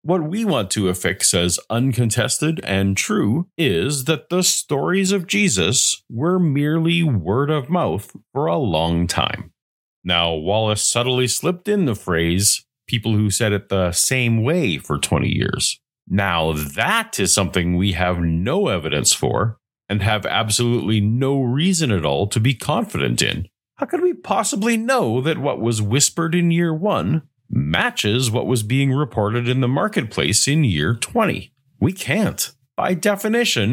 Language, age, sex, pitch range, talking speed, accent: English, 30-49, male, 100-160 Hz, 155 wpm, American